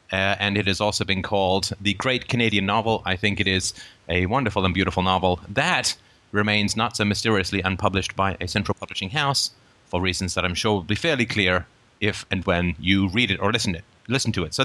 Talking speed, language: 215 wpm, English